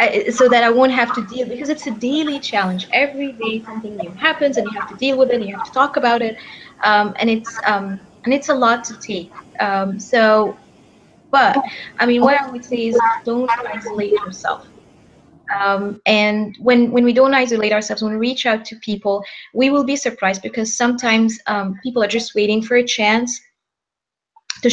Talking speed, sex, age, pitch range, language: 200 wpm, female, 20-39, 210-255 Hz, English